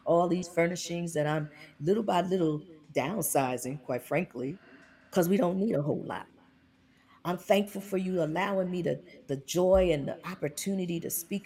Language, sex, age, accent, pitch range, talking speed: English, female, 40-59, American, 140-190 Hz, 170 wpm